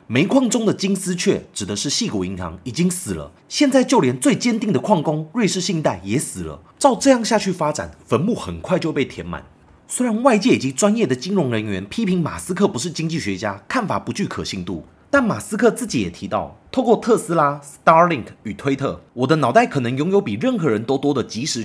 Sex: male